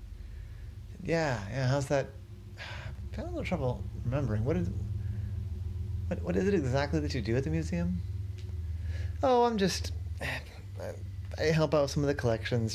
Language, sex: English, male